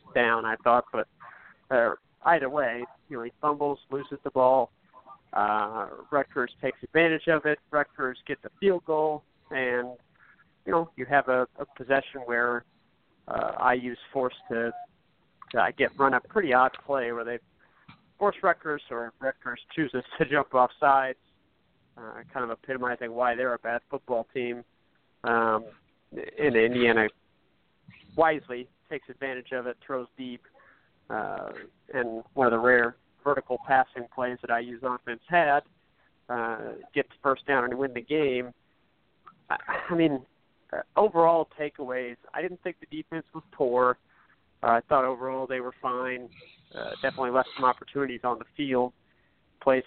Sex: male